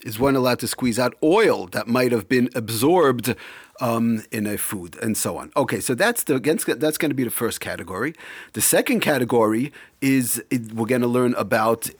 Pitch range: 120-155 Hz